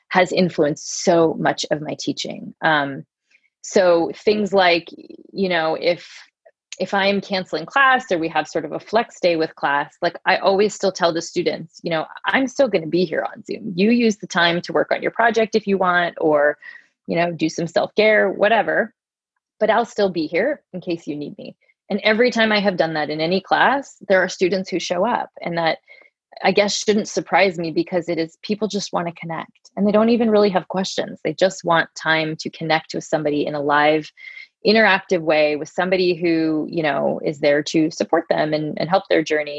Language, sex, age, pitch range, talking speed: English, female, 20-39, 155-200 Hz, 210 wpm